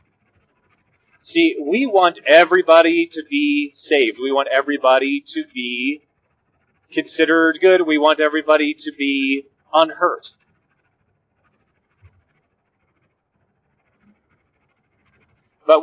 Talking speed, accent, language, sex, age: 80 wpm, American, English, male, 30-49